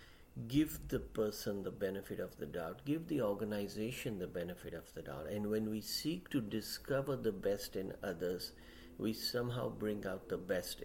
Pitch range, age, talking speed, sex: 90-115 Hz, 50-69, 175 wpm, male